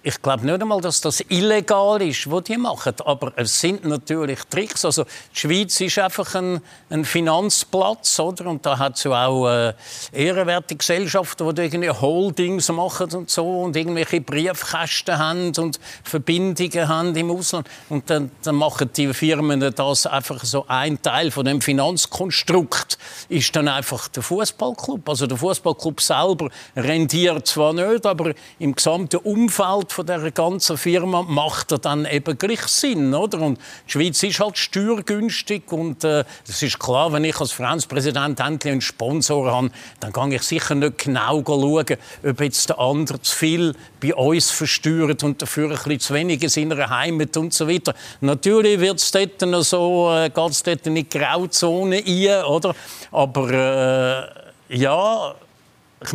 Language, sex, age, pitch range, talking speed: German, male, 50-69, 145-180 Hz, 165 wpm